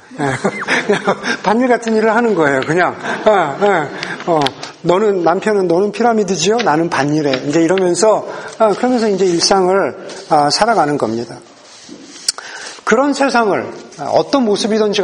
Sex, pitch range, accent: male, 195-260 Hz, native